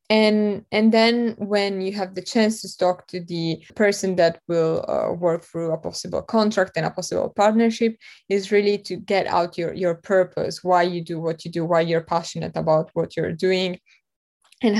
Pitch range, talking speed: 175-195 Hz, 190 wpm